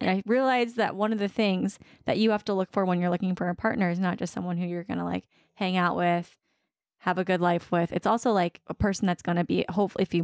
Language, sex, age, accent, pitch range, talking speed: English, female, 20-39, American, 180-220 Hz, 285 wpm